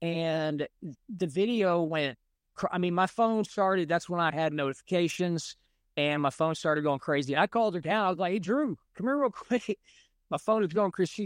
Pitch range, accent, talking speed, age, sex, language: 145-195 Hz, American, 210 wpm, 40-59, male, English